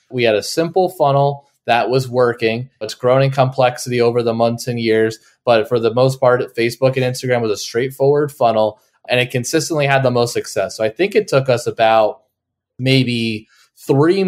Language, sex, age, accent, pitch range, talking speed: English, male, 20-39, American, 115-140 Hz, 190 wpm